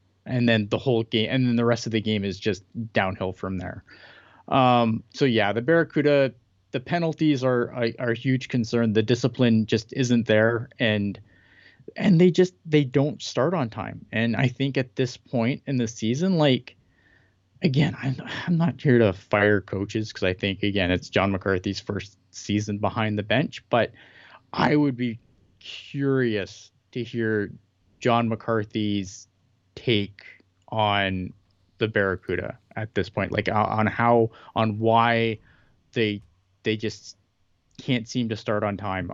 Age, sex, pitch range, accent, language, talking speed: 20-39, male, 105-130 Hz, American, English, 165 wpm